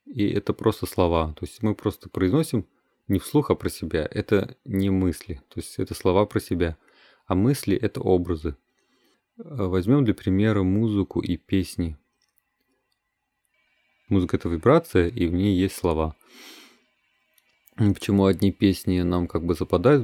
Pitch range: 90-105 Hz